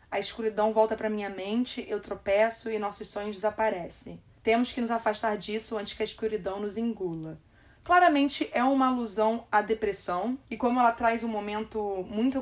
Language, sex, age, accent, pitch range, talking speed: Portuguese, female, 20-39, Brazilian, 205-245 Hz, 175 wpm